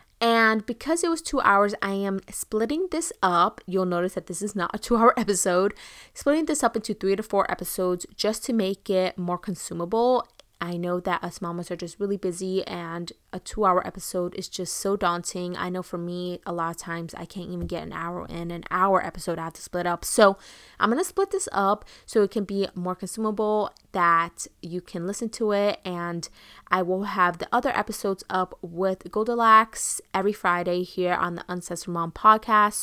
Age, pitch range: 20-39, 175-220 Hz